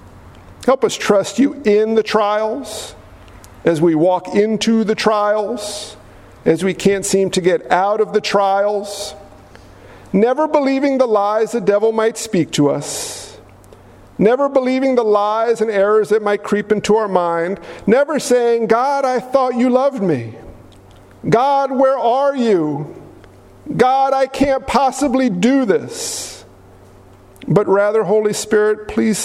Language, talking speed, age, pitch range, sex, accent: English, 140 wpm, 50-69, 150-230 Hz, male, American